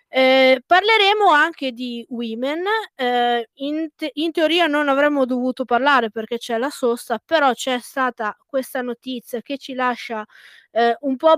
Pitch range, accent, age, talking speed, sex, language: 235-270 Hz, native, 20-39, 150 wpm, female, Italian